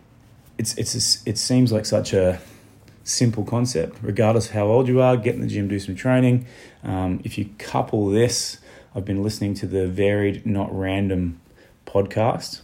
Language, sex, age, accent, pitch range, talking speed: English, male, 20-39, Australian, 95-115 Hz, 170 wpm